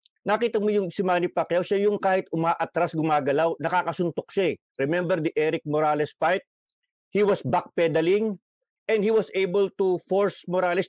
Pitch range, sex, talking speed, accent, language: 170-210 Hz, male, 155 wpm, Filipino, English